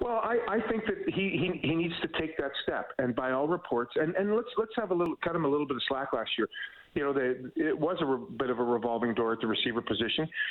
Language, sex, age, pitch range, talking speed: English, male, 40-59, 125-145 Hz, 290 wpm